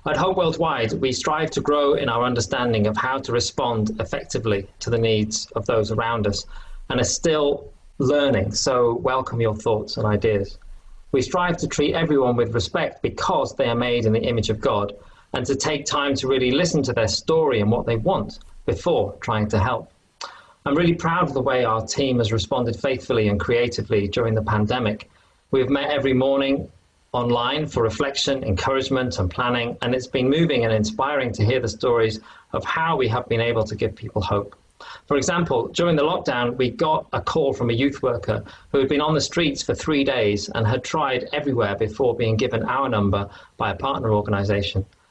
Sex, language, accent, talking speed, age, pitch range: male, English, British, 195 wpm, 40-59, 110-140 Hz